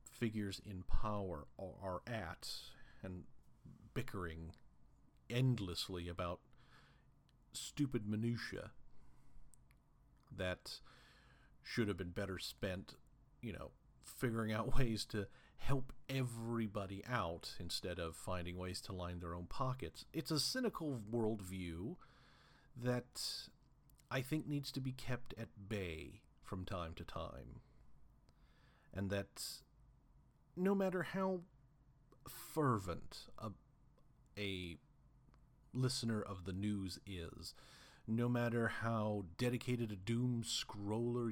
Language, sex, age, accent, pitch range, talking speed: English, male, 40-59, American, 95-135 Hz, 105 wpm